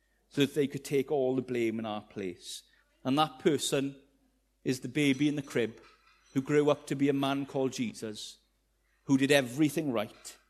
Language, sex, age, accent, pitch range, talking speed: English, male, 40-59, British, 135-190 Hz, 190 wpm